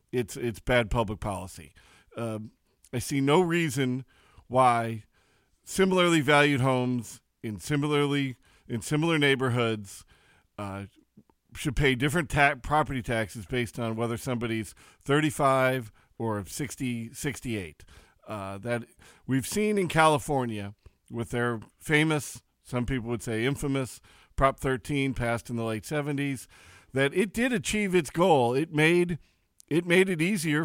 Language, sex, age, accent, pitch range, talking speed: English, male, 40-59, American, 115-150 Hz, 130 wpm